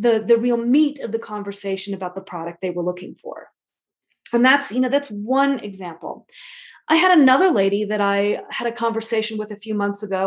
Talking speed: 205 wpm